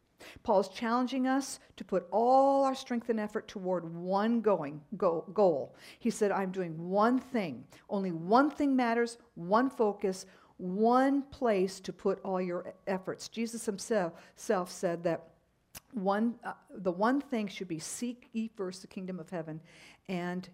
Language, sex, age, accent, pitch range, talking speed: English, female, 50-69, American, 190-240 Hz, 160 wpm